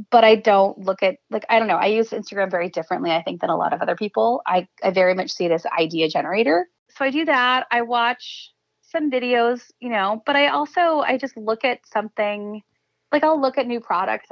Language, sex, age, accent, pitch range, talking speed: English, female, 30-49, American, 195-255 Hz, 230 wpm